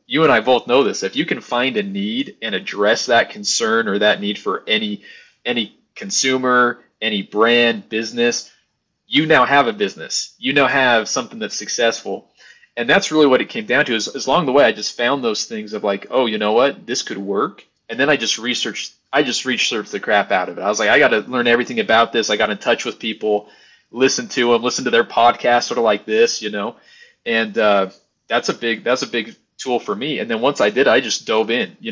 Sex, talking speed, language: male, 240 wpm, English